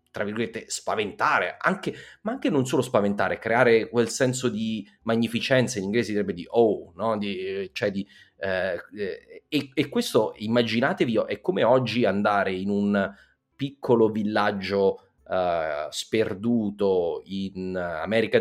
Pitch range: 95-125 Hz